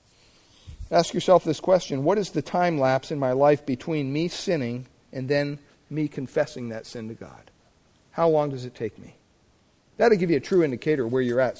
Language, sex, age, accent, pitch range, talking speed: English, male, 50-69, American, 130-185 Hz, 200 wpm